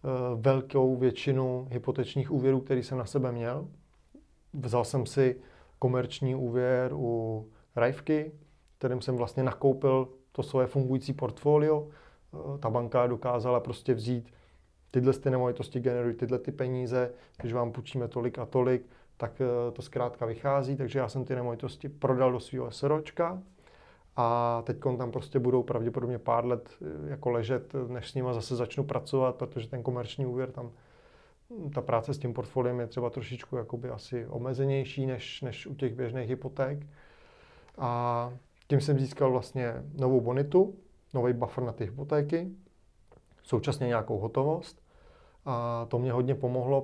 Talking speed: 140 wpm